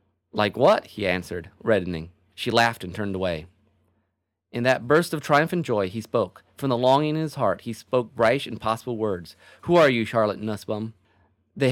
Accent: American